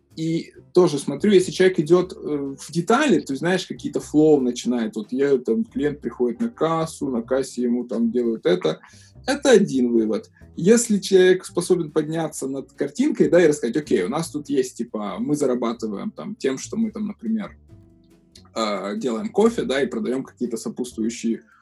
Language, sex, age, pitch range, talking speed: Russian, male, 20-39, 125-185 Hz, 160 wpm